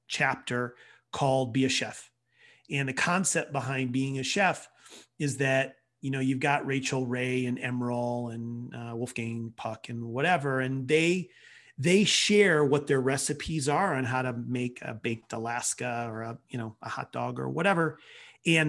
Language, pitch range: English, 125-150 Hz